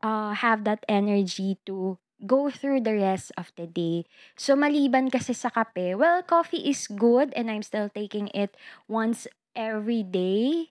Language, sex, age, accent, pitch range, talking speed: Filipino, female, 20-39, native, 185-260 Hz, 160 wpm